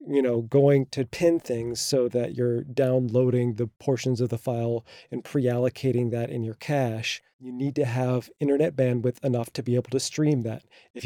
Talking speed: 190 wpm